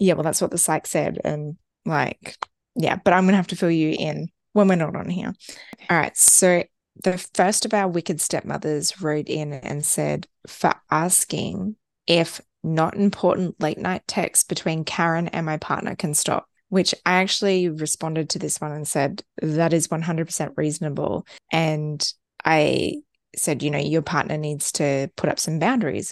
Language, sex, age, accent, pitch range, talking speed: English, female, 20-39, Australian, 150-185 Hz, 180 wpm